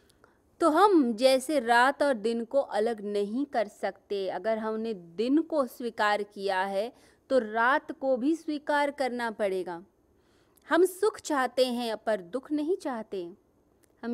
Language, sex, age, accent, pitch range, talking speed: Hindi, female, 30-49, native, 210-295 Hz, 145 wpm